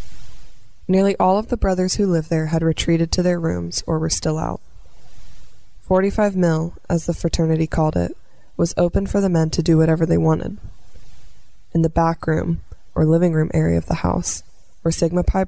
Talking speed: 185 wpm